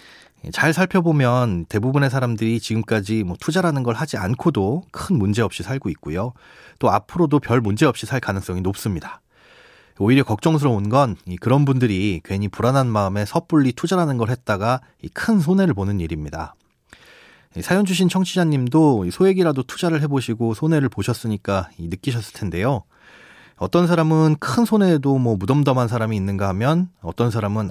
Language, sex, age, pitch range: Korean, male, 30-49, 100-155 Hz